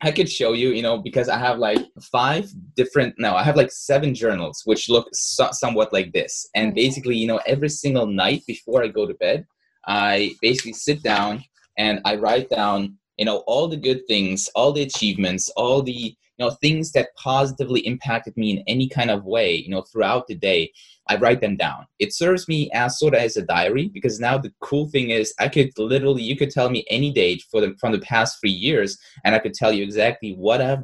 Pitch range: 110-145 Hz